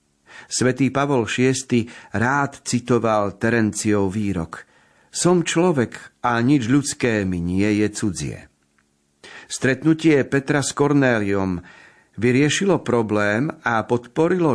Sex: male